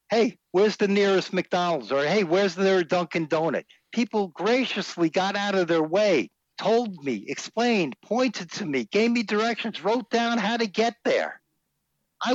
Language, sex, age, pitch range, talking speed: English, male, 60-79, 150-205 Hz, 165 wpm